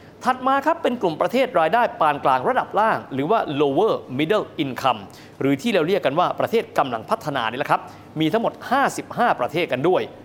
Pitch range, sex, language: 140-210 Hz, male, Thai